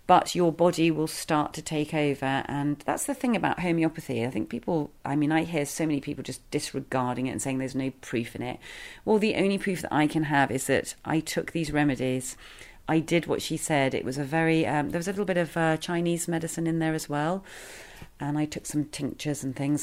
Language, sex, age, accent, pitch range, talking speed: English, female, 40-59, British, 135-170 Hz, 235 wpm